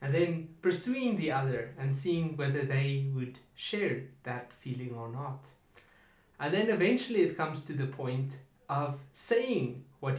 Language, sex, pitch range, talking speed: English, male, 130-175 Hz, 155 wpm